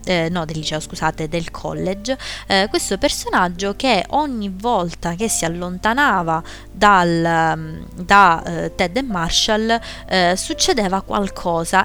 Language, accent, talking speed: Italian, native, 120 wpm